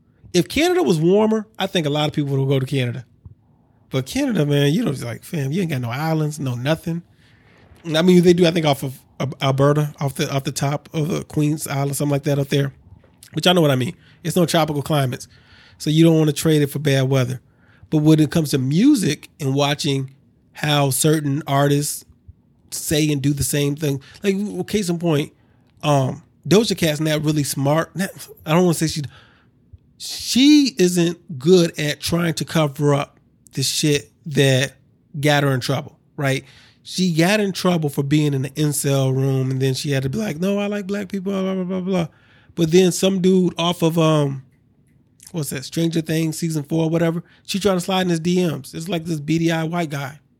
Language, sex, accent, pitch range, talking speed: English, male, American, 140-175 Hz, 210 wpm